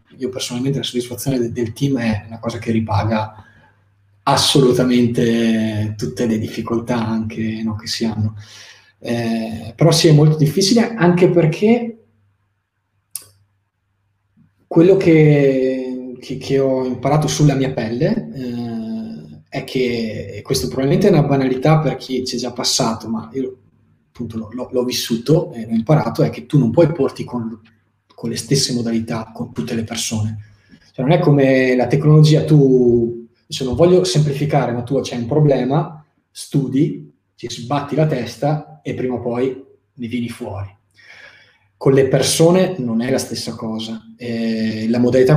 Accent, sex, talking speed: native, male, 155 wpm